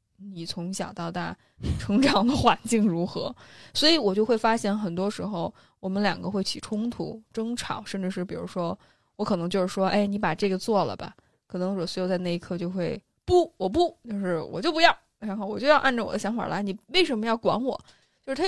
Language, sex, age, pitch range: Chinese, female, 20-39, 180-235 Hz